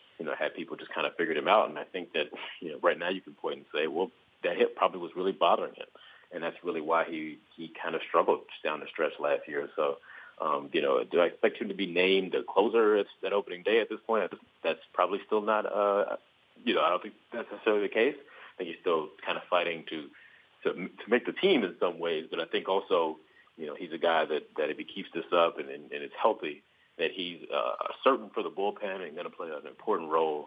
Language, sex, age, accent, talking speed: English, male, 40-59, American, 255 wpm